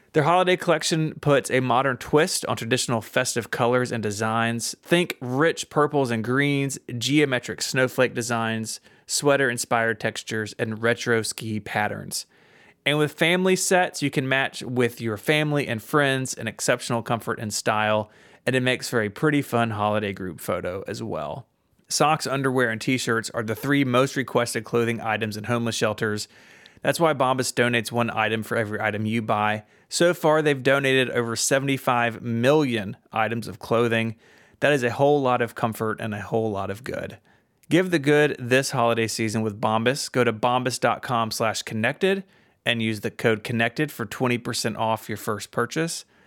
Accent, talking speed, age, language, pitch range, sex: American, 165 wpm, 30-49, English, 115-140 Hz, male